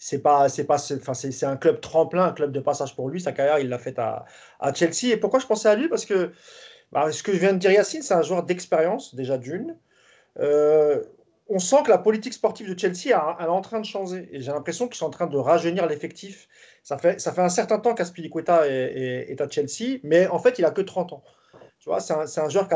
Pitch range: 145-200 Hz